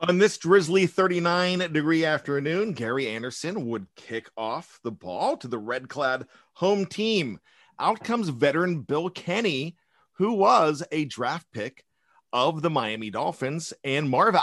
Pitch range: 140-185 Hz